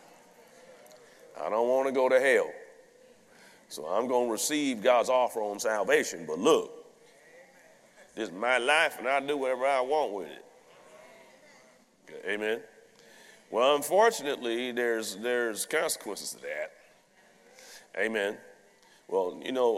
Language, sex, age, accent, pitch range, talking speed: English, male, 40-59, American, 120-190 Hz, 130 wpm